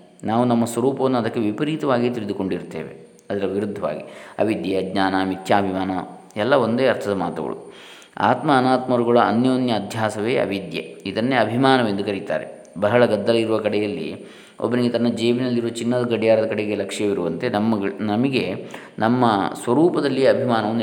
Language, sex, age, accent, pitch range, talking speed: Kannada, male, 20-39, native, 100-125 Hz, 110 wpm